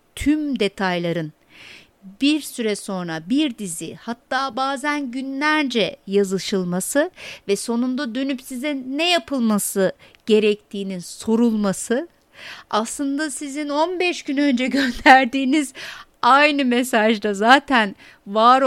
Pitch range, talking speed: 200-270 Hz, 95 wpm